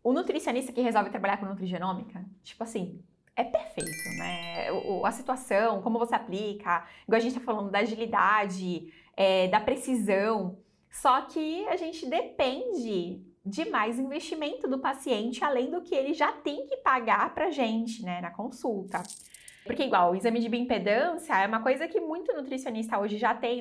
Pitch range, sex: 205-285 Hz, female